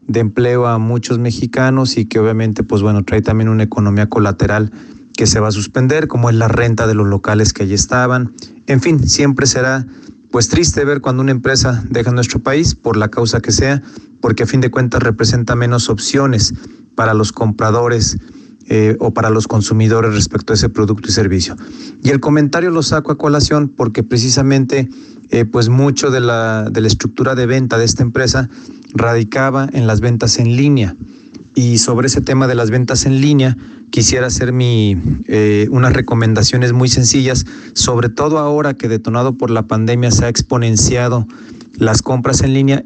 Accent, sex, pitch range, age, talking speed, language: Mexican, male, 115-135 Hz, 40-59, 180 wpm, Spanish